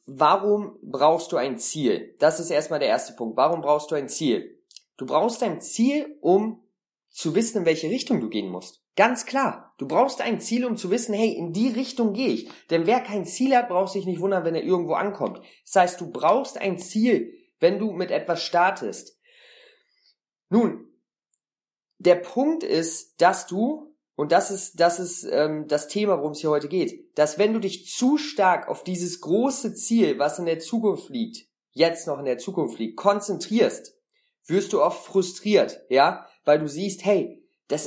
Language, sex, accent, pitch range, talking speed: German, male, German, 175-240 Hz, 190 wpm